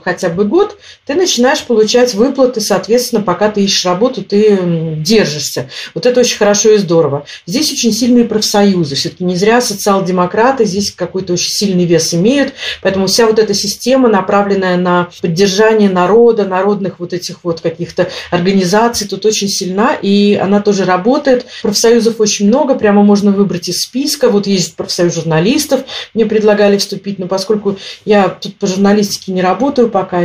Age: 40-59